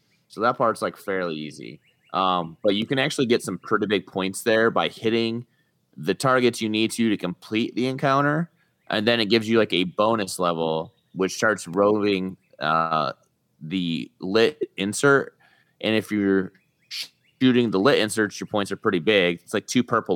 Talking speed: 175 wpm